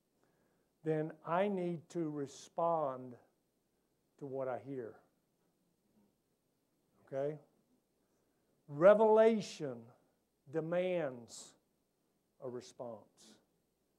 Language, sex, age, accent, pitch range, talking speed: English, male, 50-69, American, 150-210 Hz, 60 wpm